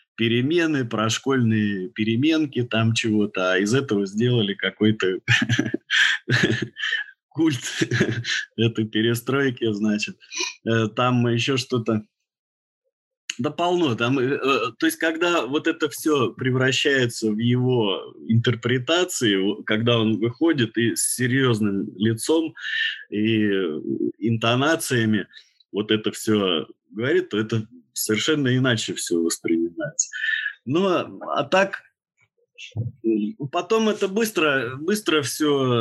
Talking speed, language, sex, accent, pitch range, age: 95 wpm, Russian, male, native, 110-160 Hz, 20-39